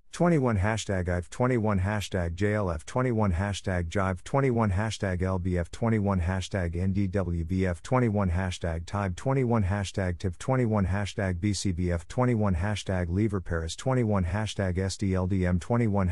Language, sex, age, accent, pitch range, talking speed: English, male, 50-69, American, 90-105 Hz, 120 wpm